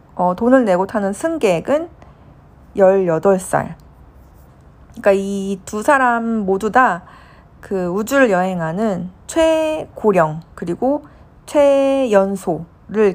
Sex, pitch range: female, 190-265 Hz